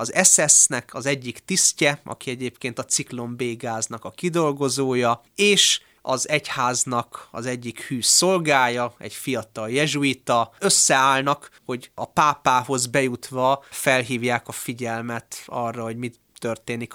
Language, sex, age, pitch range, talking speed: Hungarian, male, 30-49, 115-140 Hz, 125 wpm